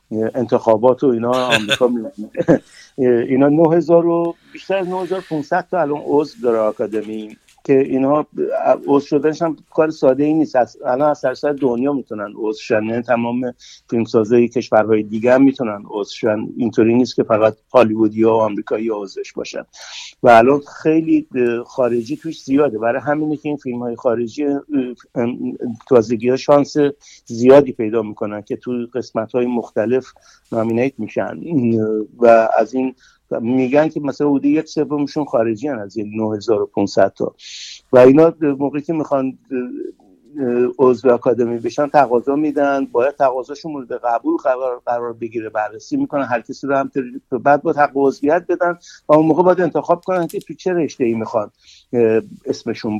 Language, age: Persian, 60-79